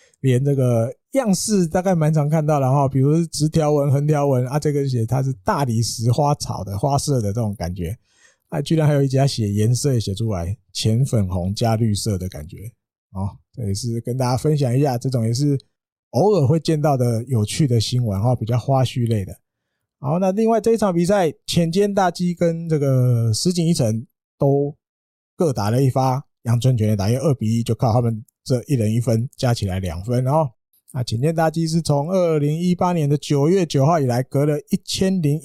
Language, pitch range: Chinese, 115-155 Hz